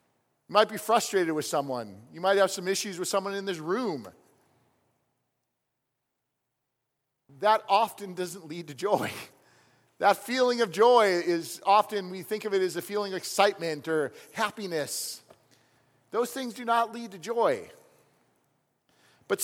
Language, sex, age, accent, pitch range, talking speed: English, male, 40-59, American, 165-240 Hz, 145 wpm